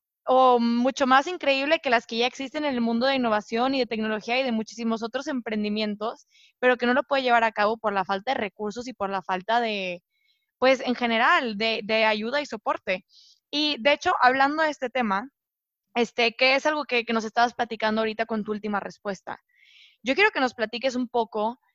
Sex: female